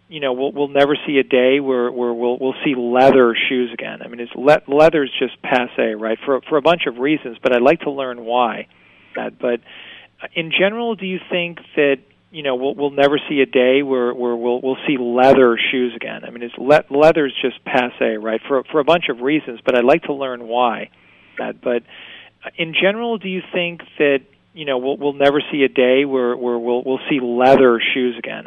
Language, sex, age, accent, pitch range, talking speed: English, male, 40-59, American, 125-155 Hz, 220 wpm